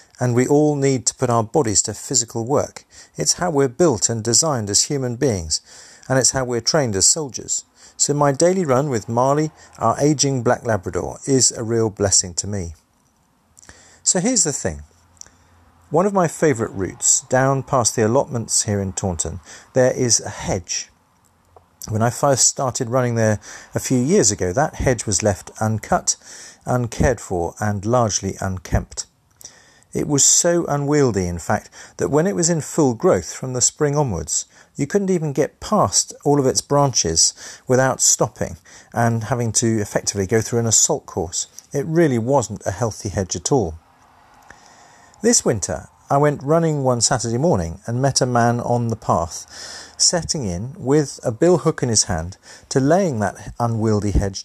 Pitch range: 100-140 Hz